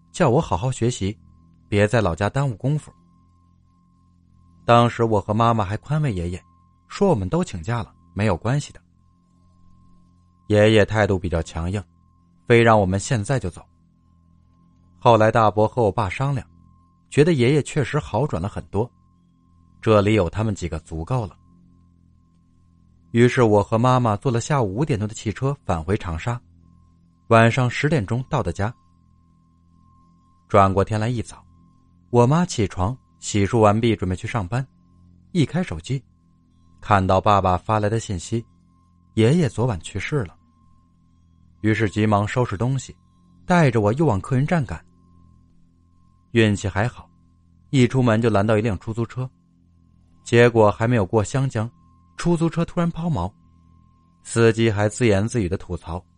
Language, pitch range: Chinese, 90-115 Hz